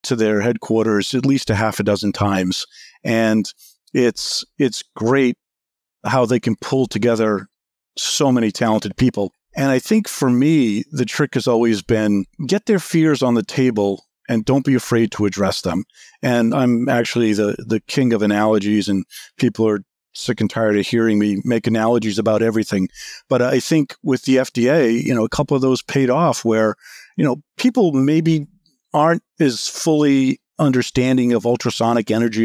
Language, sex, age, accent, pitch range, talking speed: English, male, 50-69, American, 110-140 Hz, 170 wpm